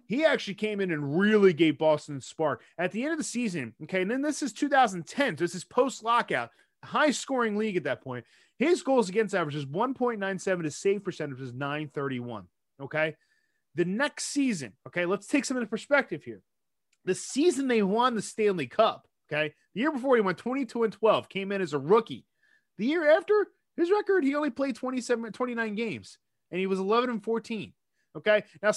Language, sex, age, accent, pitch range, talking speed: English, male, 30-49, American, 170-245 Hz, 195 wpm